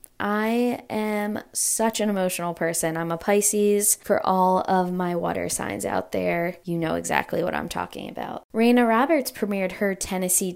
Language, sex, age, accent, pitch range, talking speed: English, female, 10-29, American, 170-205 Hz, 165 wpm